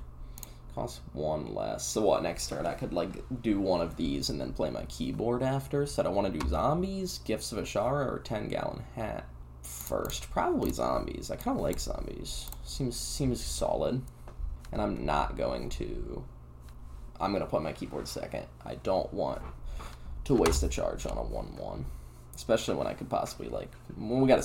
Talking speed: 180 wpm